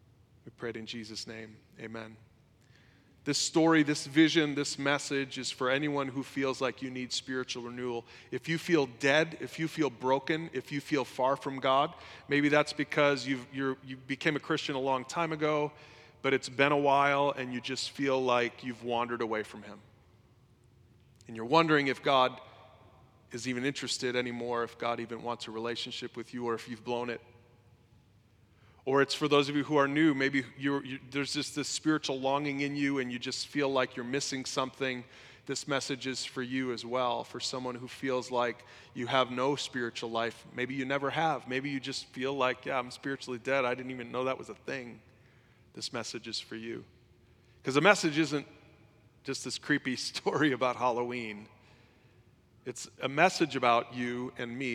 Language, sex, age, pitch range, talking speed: English, male, 30-49, 120-140 Hz, 185 wpm